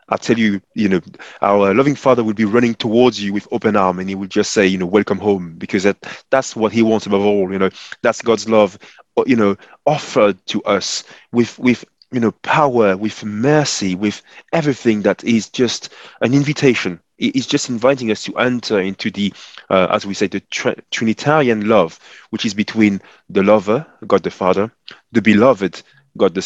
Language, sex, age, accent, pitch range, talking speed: English, male, 30-49, French, 100-120 Hz, 190 wpm